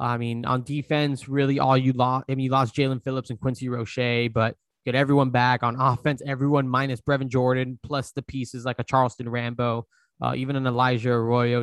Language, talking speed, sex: English, 200 wpm, male